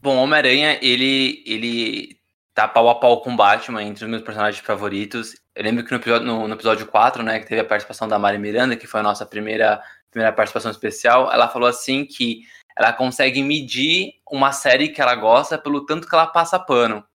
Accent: Brazilian